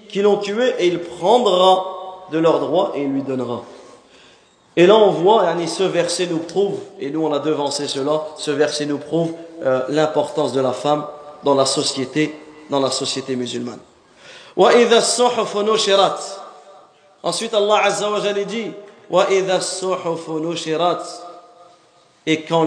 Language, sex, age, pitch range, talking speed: French, male, 40-59, 150-205 Hz, 130 wpm